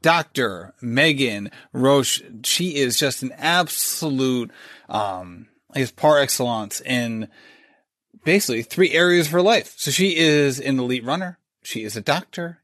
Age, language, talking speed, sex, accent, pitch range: 30-49, English, 140 wpm, male, American, 130-155 Hz